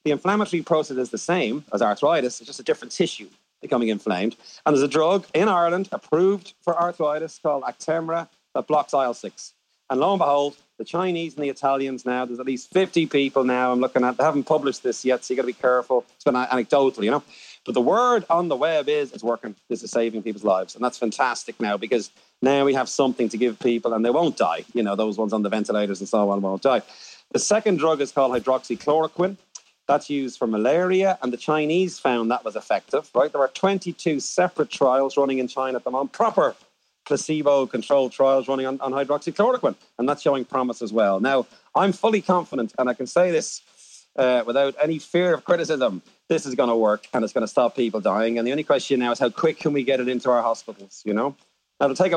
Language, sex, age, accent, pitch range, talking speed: English, male, 40-59, Irish, 125-165 Hz, 225 wpm